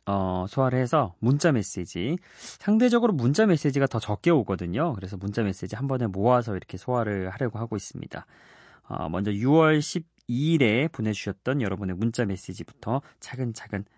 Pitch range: 105-160 Hz